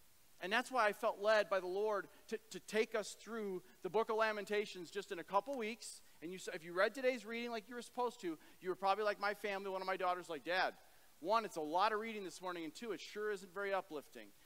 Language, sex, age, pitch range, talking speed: English, male, 40-59, 190-235 Hz, 255 wpm